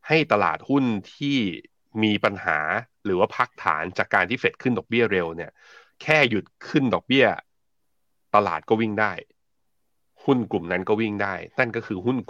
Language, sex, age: Thai, male, 30-49